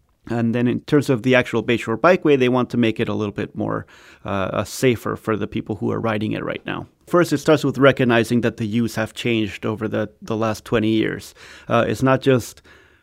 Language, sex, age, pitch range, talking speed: English, male, 30-49, 105-125 Hz, 225 wpm